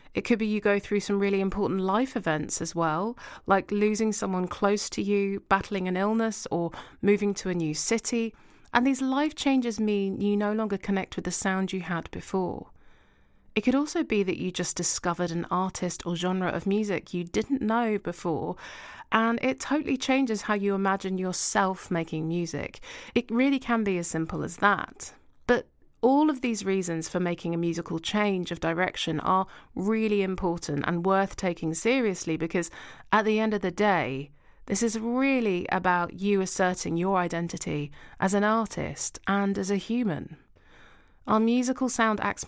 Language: English